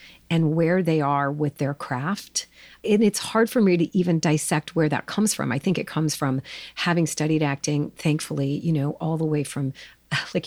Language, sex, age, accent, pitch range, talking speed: English, female, 40-59, American, 155-205 Hz, 200 wpm